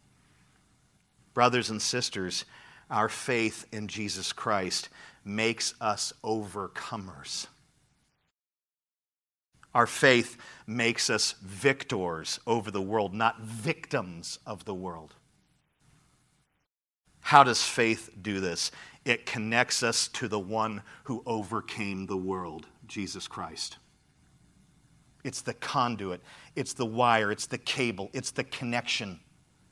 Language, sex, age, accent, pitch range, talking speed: English, male, 40-59, American, 110-140 Hz, 105 wpm